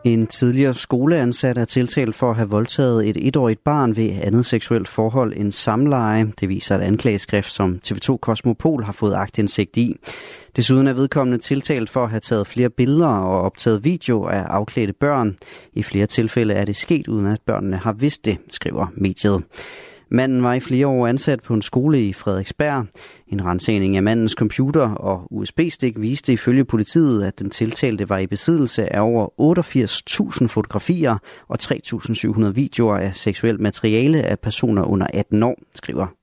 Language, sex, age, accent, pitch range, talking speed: Danish, male, 30-49, native, 105-130 Hz, 170 wpm